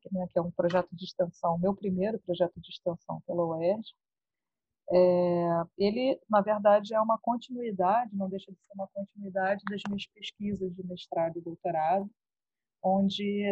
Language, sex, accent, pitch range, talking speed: Portuguese, female, Brazilian, 180-210 Hz, 150 wpm